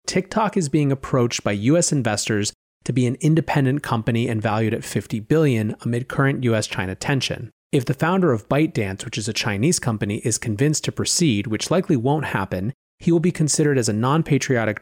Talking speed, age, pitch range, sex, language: 185 wpm, 30-49, 105-135 Hz, male, English